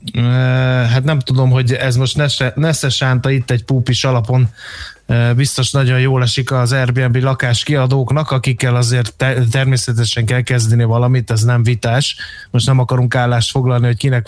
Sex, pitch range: male, 120-140 Hz